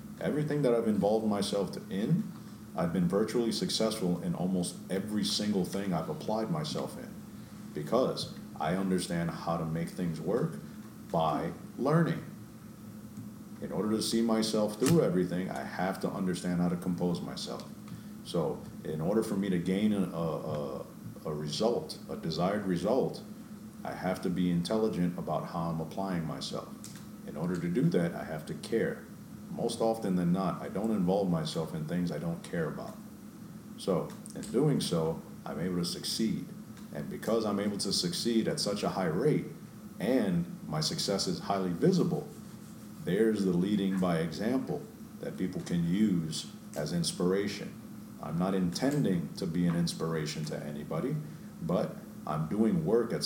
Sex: male